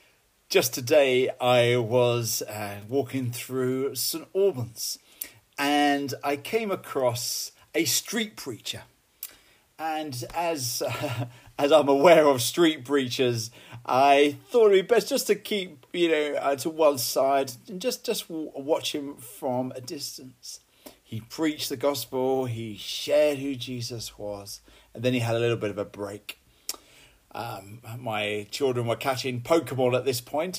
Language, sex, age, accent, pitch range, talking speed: English, male, 40-59, British, 120-150 Hz, 150 wpm